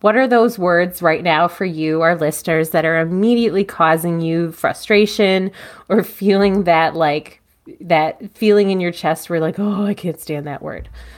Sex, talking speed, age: female, 175 wpm, 30-49